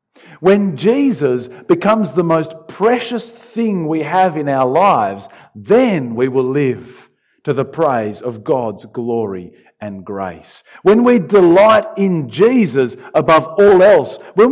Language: English